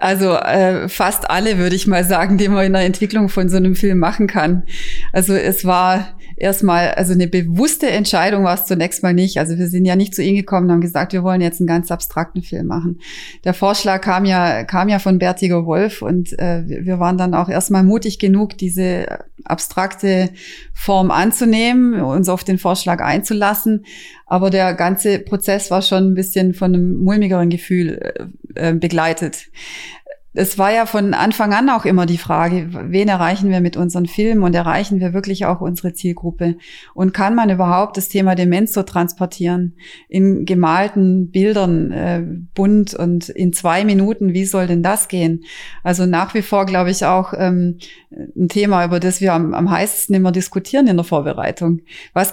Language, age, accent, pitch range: German, 30-49, German, 175-195 Hz